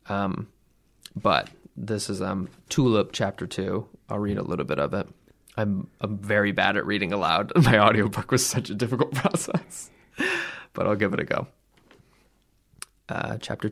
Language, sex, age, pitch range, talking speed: English, male, 20-39, 100-105 Hz, 160 wpm